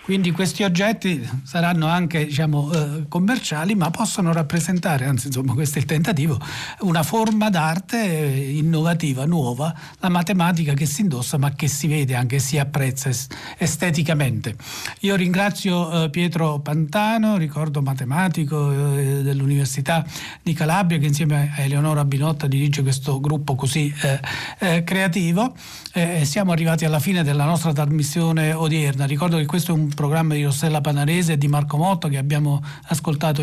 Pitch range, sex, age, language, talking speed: 145-180 Hz, male, 40-59, Italian, 150 wpm